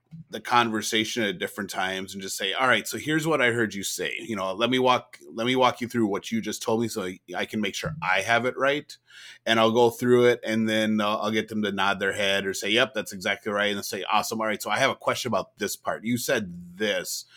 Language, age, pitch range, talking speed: English, 30-49, 100-120 Hz, 265 wpm